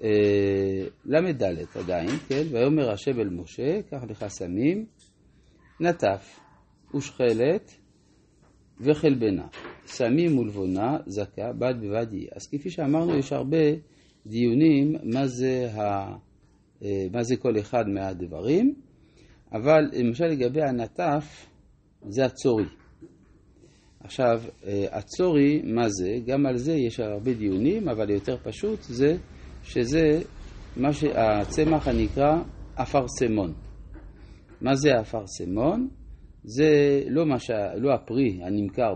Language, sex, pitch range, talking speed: Hebrew, male, 105-150 Hz, 100 wpm